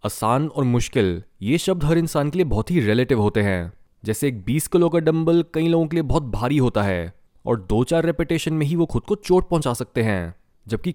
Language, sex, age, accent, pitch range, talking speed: Hindi, male, 20-39, native, 115-165 Hz, 230 wpm